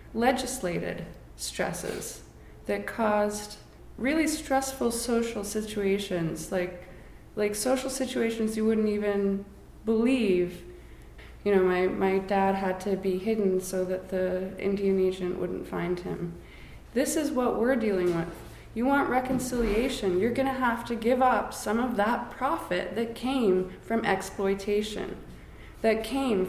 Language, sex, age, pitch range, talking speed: English, female, 20-39, 190-230 Hz, 135 wpm